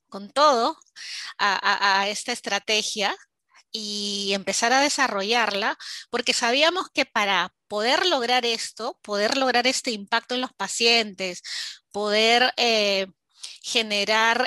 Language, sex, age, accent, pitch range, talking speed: English, female, 20-39, American, 200-255 Hz, 110 wpm